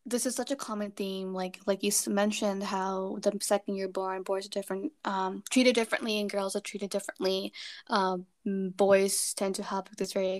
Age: 10-29